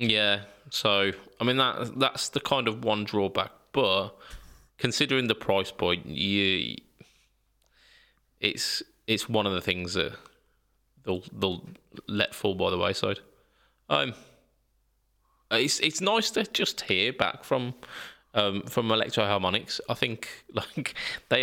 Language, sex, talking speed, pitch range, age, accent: English, male, 130 wpm, 95-115 Hz, 20-39, British